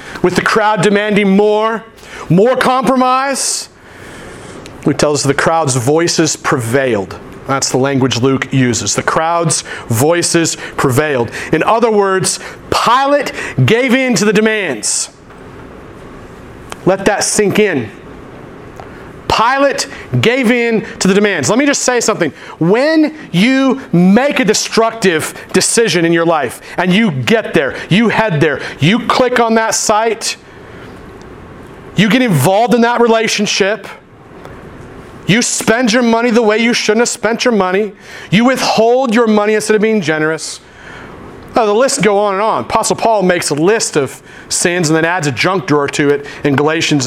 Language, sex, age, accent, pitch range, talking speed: English, male, 40-59, American, 160-225 Hz, 150 wpm